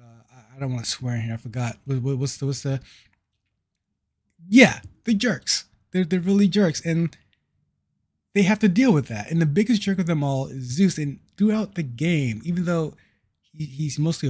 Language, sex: English, male